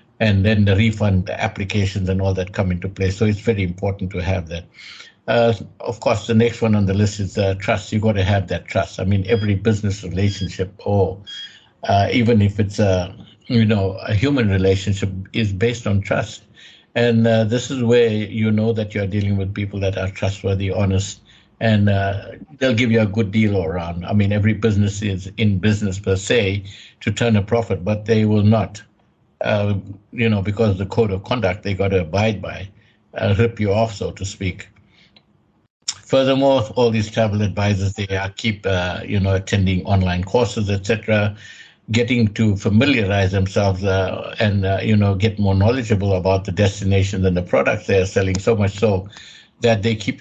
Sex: male